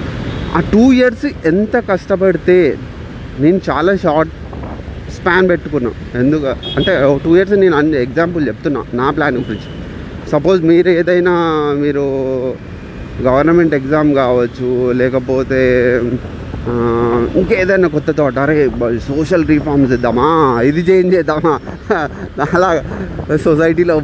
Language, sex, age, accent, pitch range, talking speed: Telugu, male, 30-49, native, 125-165 Hz, 100 wpm